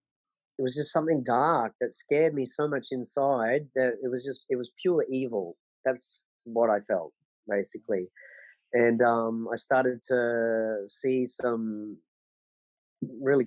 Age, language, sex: 30-49, English, male